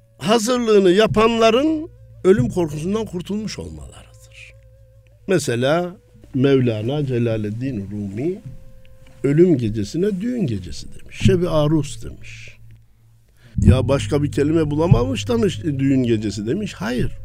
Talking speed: 95 wpm